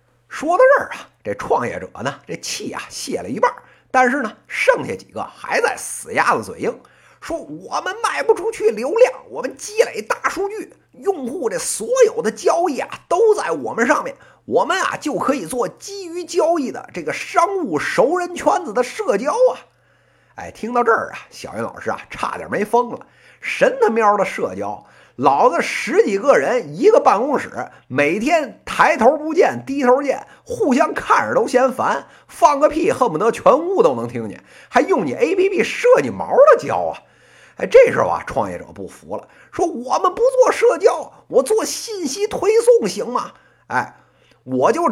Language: Chinese